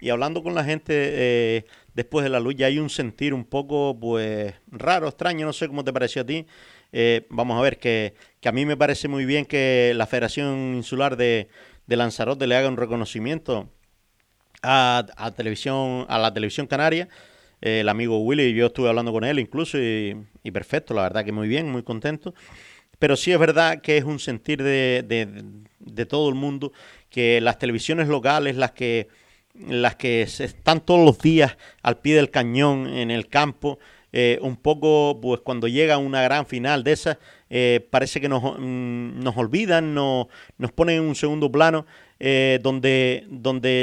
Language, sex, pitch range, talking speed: Spanish, male, 120-150 Hz, 185 wpm